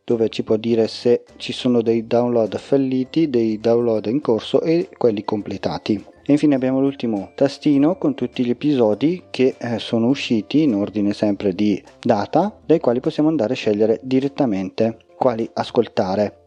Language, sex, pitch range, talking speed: Italian, male, 110-135 Hz, 155 wpm